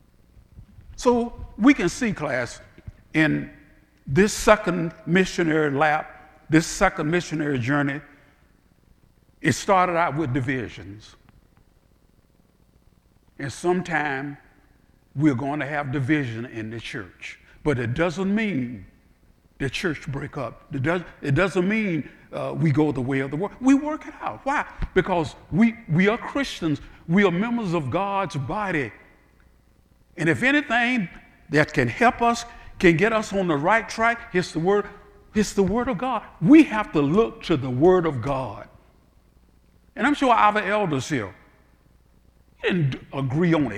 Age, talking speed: 60-79, 145 wpm